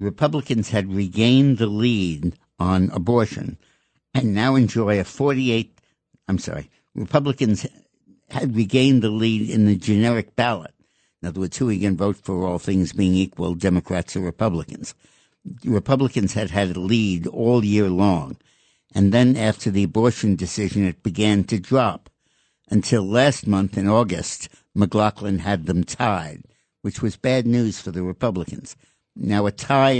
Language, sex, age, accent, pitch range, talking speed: English, male, 60-79, American, 95-120 Hz, 150 wpm